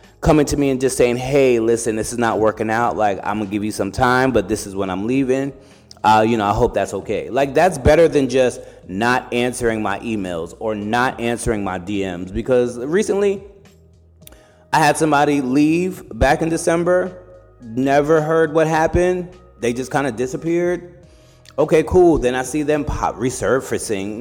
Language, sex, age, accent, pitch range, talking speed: English, male, 30-49, American, 105-145 Hz, 185 wpm